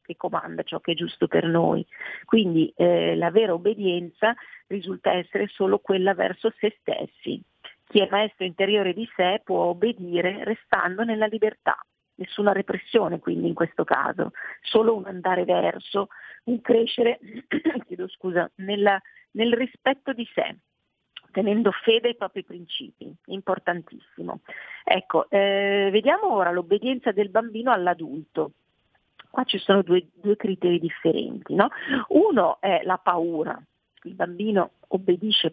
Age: 40-59